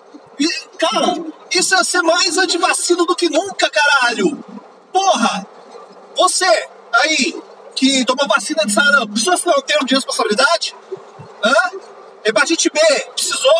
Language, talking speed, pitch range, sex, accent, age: Portuguese, 130 wpm, 260-365 Hz, male, Brazilian, 40-59